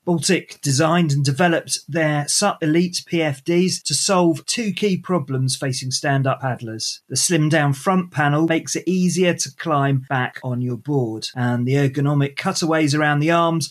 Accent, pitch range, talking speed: British, 135-165 Hz, 160 wpm